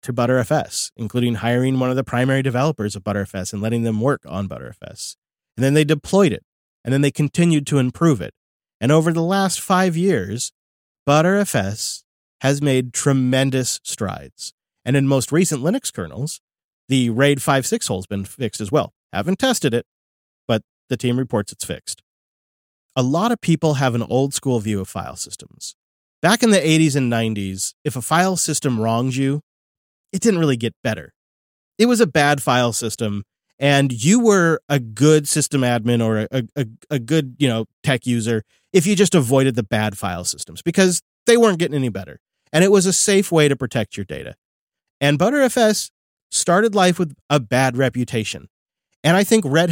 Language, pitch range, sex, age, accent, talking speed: English, 115-155 Hz, male, 30-49, American, 180 wpm